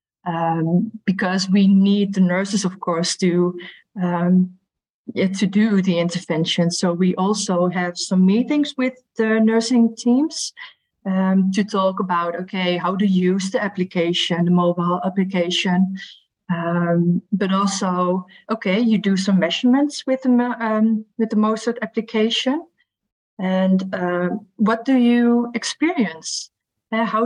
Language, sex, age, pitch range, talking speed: English, female, 30-49, 185-220 Hz, 135 wpm